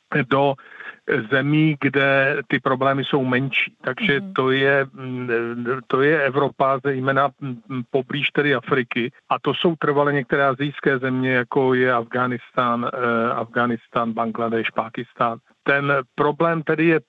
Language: Slovak